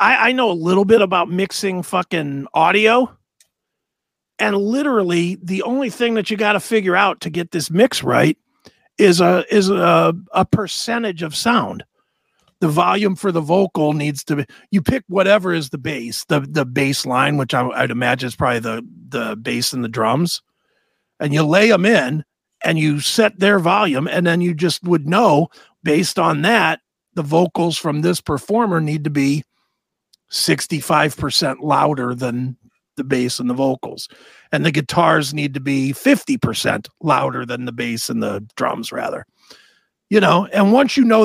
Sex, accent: male, American